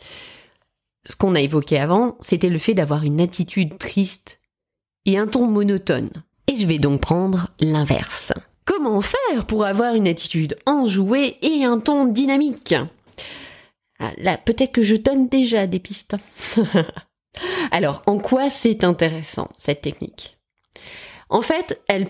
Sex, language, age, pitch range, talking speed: female, French, 30-49, 170-230 Hz, 140 wpm